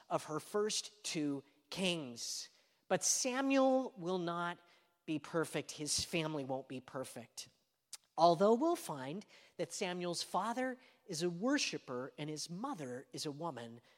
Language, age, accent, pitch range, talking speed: English, 40-59, American, 145-195 Hz, 135 wpm